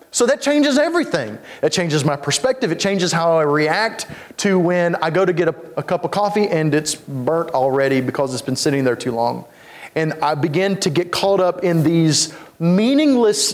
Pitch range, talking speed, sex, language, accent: 150-190 Hz, 200 wpm, male, English, American